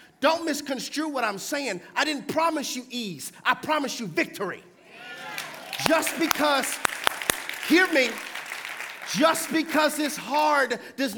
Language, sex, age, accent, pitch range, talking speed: English, male, 40-59, American, 245-295 Hz, 125 wpm